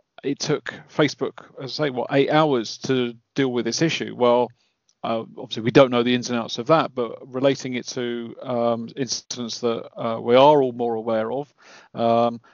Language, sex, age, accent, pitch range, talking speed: English, male, 40-59, British, 125-145 Hz, 195 wpm